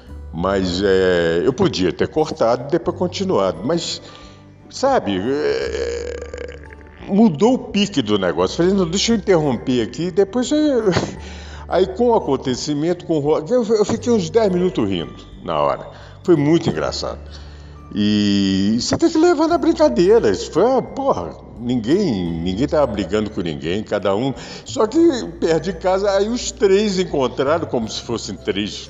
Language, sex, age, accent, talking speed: Portuguese, male, 50-69, Brazilian, 155 wpm